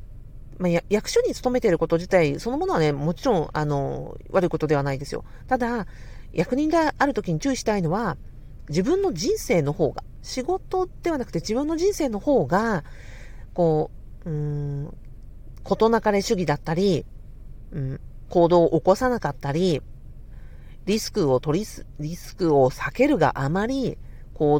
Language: Japanese